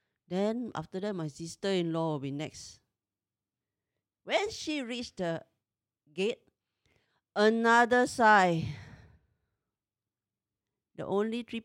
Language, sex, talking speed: English, female, 95 wpm